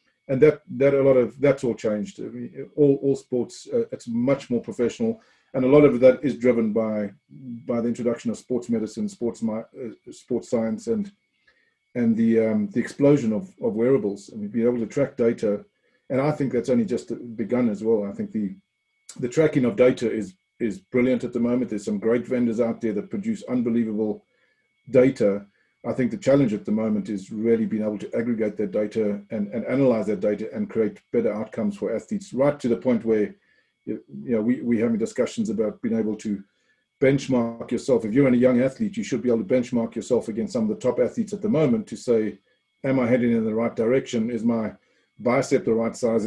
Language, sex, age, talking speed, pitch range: English, male, 40-59, 210 wpm, 115-145 Hz